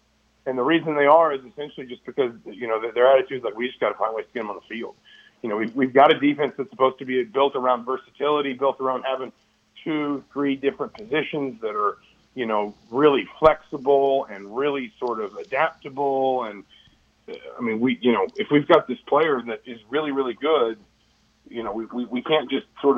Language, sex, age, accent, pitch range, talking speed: English, male, 40-59, American, 120-150 Hz, 220 wpm